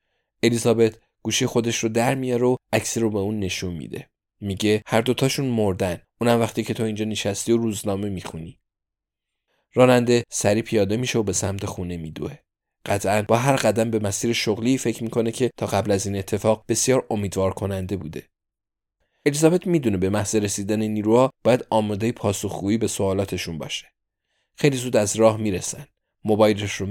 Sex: male